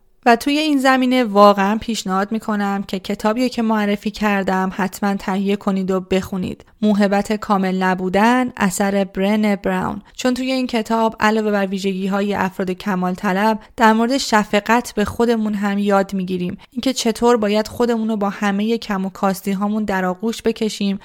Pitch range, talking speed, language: 200-235 Hz, 155 wpm, Persian